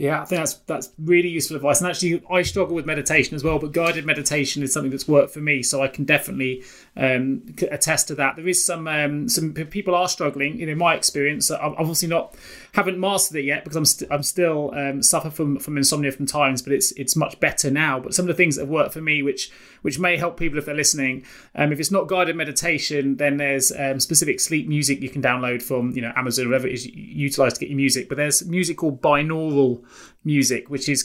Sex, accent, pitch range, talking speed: male, British, 140-170 Hz, 240 wpm